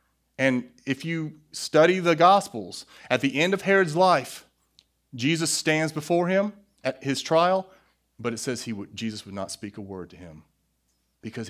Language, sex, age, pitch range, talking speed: English, male, 30-49, 95-145 Hz, 170 wpm